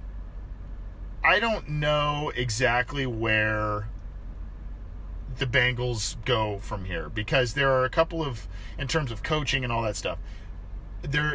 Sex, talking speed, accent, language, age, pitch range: male, 130 wpm, American, English, 40-59, 105-130 Hz